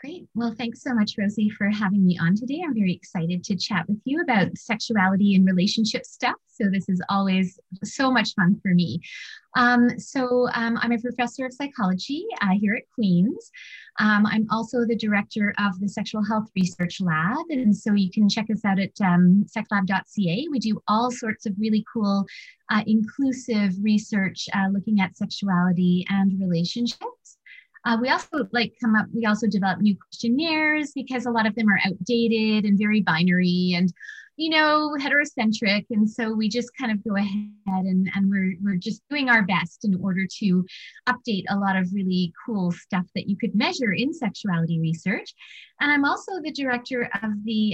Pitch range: 190-240 Hz